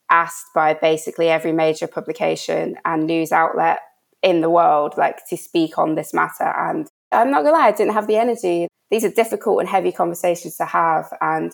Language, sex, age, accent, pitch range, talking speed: English, female, 20-39, British, 160-180 Hz, 190 wpm